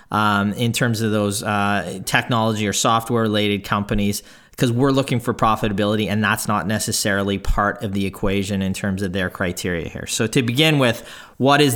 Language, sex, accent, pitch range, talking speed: English, male, American, 100-125 Hz, 185 wpm